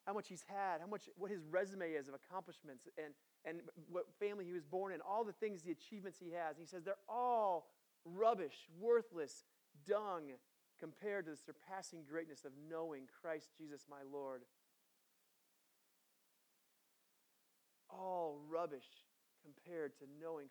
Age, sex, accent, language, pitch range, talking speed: 30-49, male, American, English, 150-200 Hz, 150 wpm